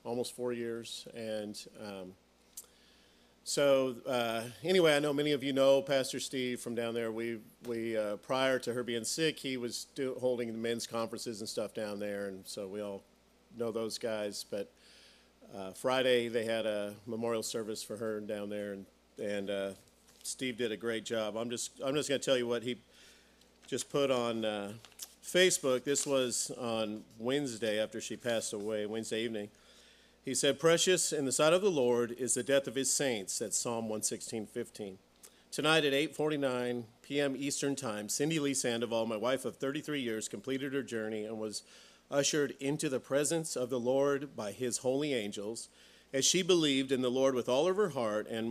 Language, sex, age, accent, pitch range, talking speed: English, male, 40-59, American, 110-135 Hz, 185 wpm